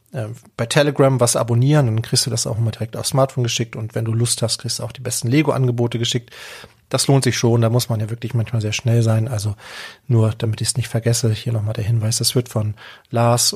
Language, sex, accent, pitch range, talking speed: German, male, German, 115-140 Hz, 240 wpm